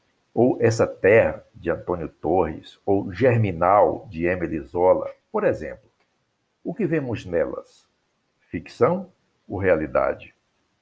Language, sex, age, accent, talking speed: Portuguese, male, 60-79, Brazilian, 110 wpm